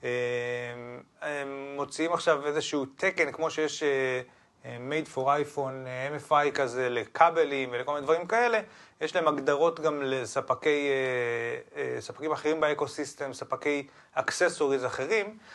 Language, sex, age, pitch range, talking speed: Hebrew, male, 30-49, 135-160 Hz, 120 wpm